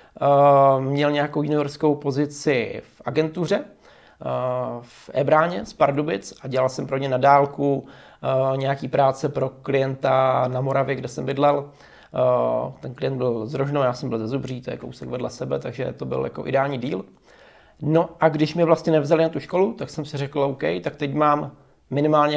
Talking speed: 180 wpm